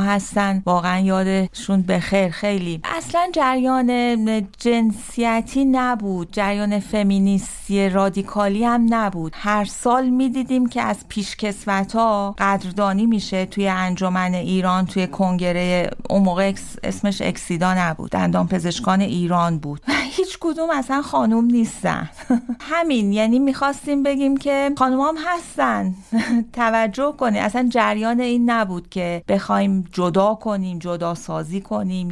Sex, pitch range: female, 195-245 Hz